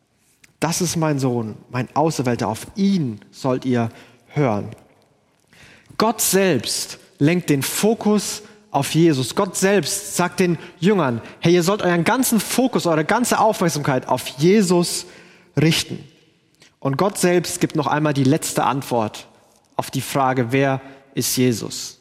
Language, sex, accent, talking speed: German, male, German, 135 wpm